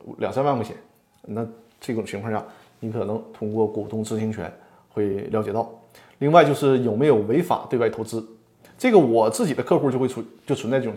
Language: Chinese